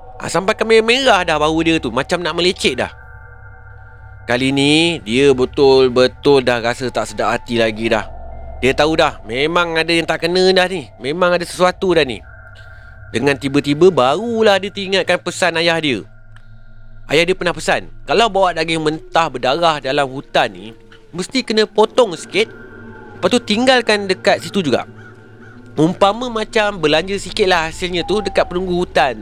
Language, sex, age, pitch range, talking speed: Malay, male, 30-49, 110-180 Hz, 155 wpm